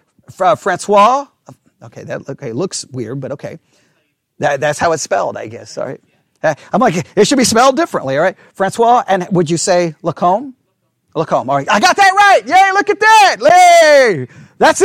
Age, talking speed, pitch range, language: 40-59, 185 wpm, 165-270 Hz, English